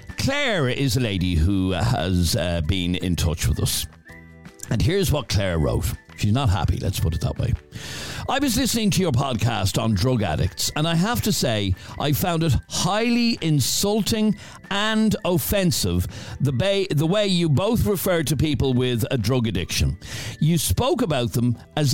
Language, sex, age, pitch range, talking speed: English, male, 60-79, 115-180 Hz, 170 wpm